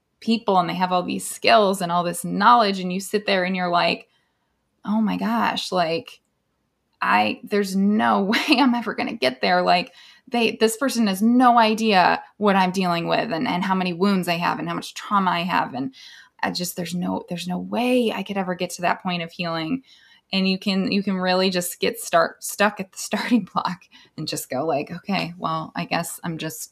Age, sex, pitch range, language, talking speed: 20-39, female, 175-220 Hz, English, 220 wpm